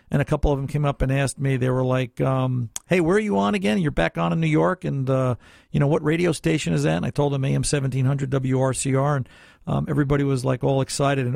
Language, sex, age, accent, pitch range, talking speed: English, male, 50-69, American, 130-165 Hz, 255 wpm